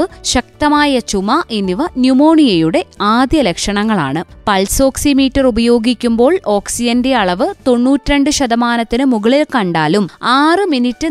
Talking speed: 90 wpm